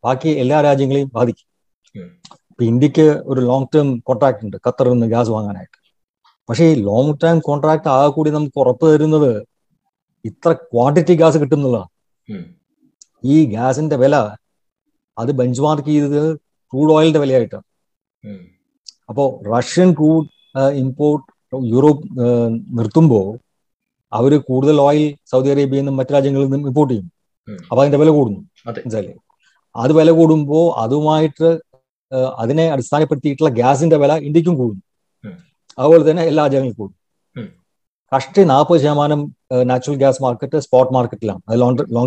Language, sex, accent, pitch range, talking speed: Malayalam, male, native, 125-155 Hz, 120 wpm